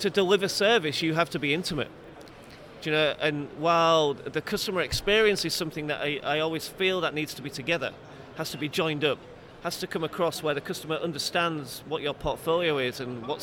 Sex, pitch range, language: male, 140-170 Hz, English